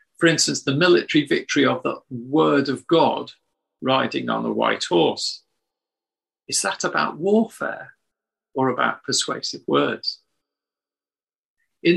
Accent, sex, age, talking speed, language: British, male, 50-69, 120 wpm, English